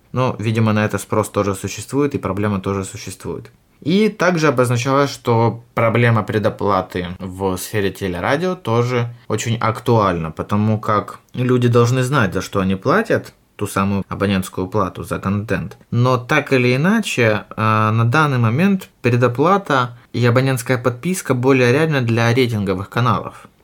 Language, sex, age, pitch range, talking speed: Ukrainian, male, 20-39, 100-130 Hz, 135 wpm